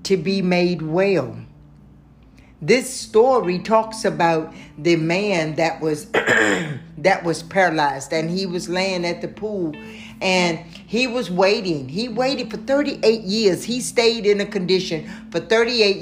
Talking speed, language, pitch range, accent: 140 wpm, English, 185-235 Hz, American